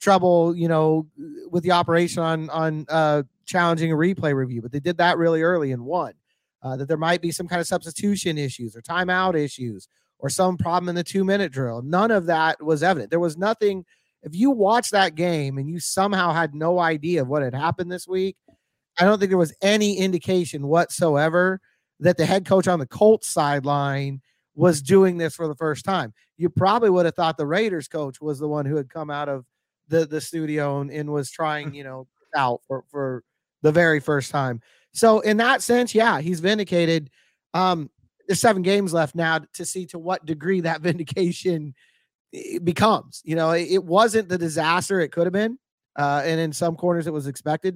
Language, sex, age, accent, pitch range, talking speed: English, male, 30-49, American, 145-180 Hz, 205 wpm